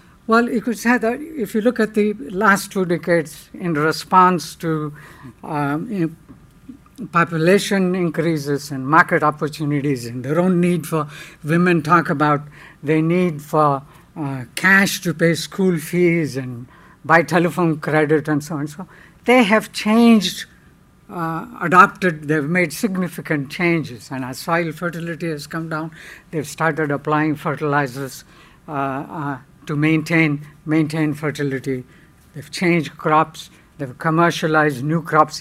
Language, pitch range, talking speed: English, 145-180 Hz, 140 wpm